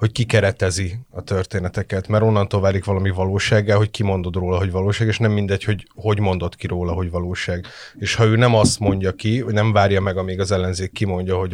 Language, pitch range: Hungarian, 100-115 Hz